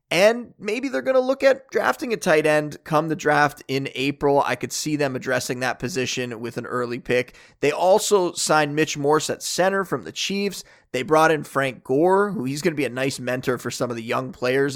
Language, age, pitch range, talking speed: English, 20-39, 140-170 Hz, 230 wpm